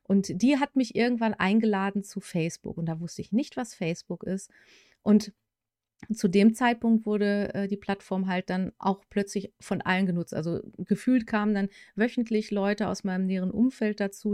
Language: German